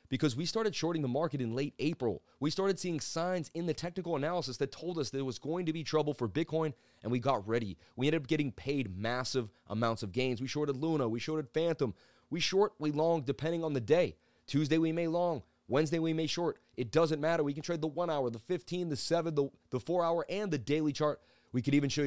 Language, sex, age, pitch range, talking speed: English, male, 30-49, 135-165 Hz, 240 wpm